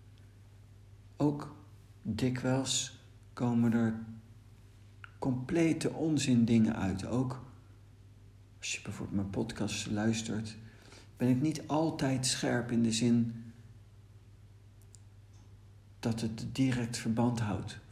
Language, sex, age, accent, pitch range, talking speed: Dutch, male, 60-79, Dutch, 100-115 Hz, 95 wpm